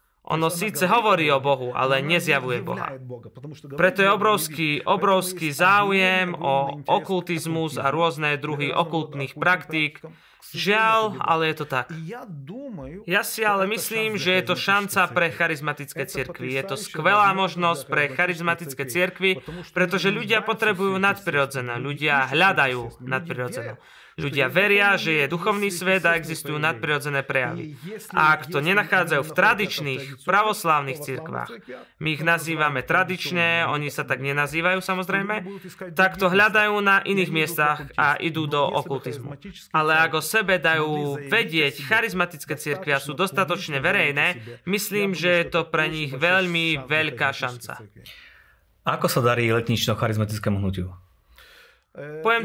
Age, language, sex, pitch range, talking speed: 20-39, Slovak, male, 145-190 Hz, 125 wpm